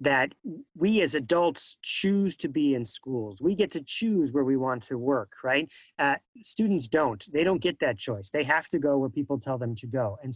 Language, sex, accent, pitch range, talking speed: English, male, American, 130-185 Hz, 220 wpm